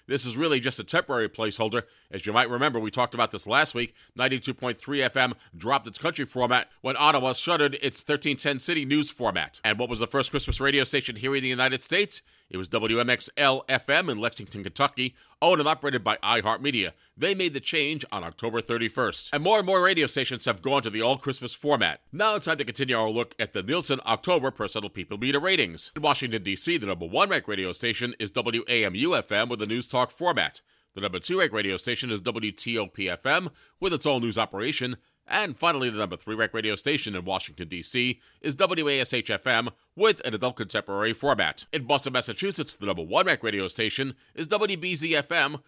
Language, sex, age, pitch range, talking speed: English, male, 40-59, 110-145 Hz, 190 wpm